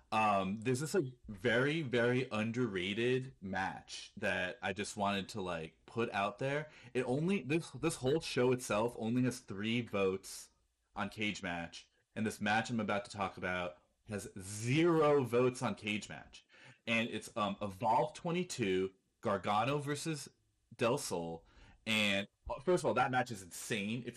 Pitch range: 100-125 Hz